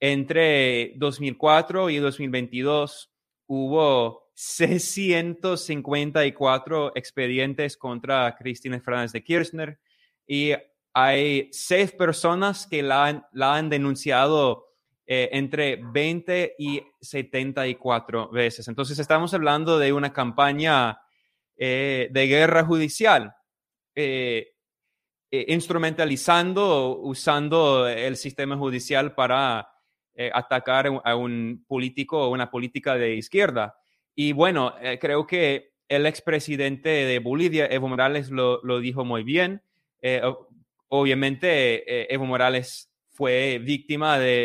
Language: Spanish